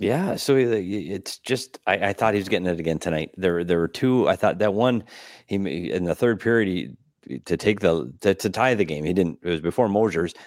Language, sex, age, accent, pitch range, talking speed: English, male, 30-49, American, 90-125 Hz, 235 wpm